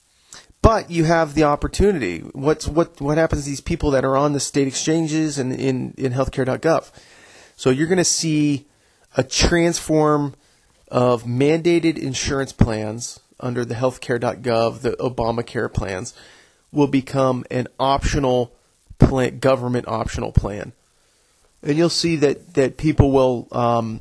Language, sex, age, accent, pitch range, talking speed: English, male, 30-49, American, 125-160 Hz, 135 wpm